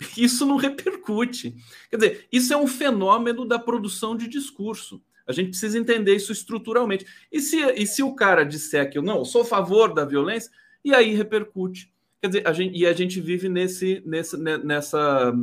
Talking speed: 165 wpm